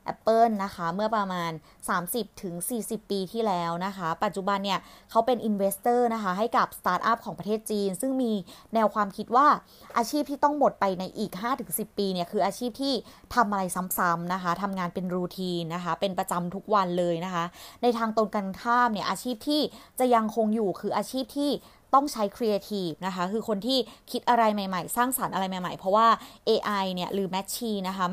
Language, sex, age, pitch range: Thai, female, 20-39, 185-235 Hz